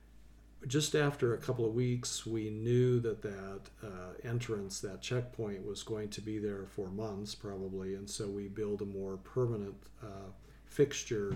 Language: English